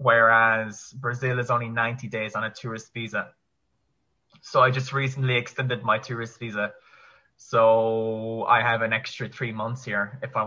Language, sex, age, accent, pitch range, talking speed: English, male, 20-39, Irish, 110-135 Hz, 160 wpm